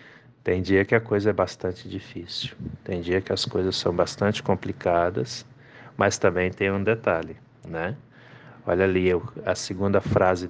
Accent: Brazilian